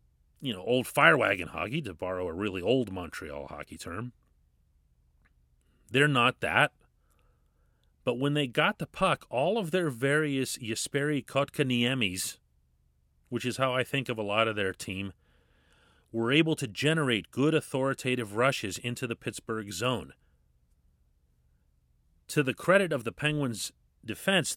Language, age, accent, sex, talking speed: English, 40-59, American, male, 140 wpm